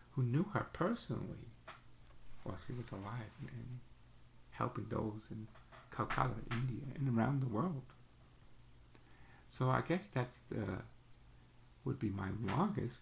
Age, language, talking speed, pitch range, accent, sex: 50-69, English, 125 wpm, 115-135 Hz, American, male